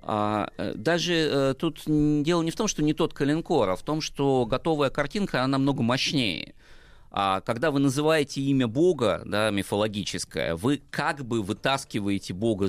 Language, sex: Russian, male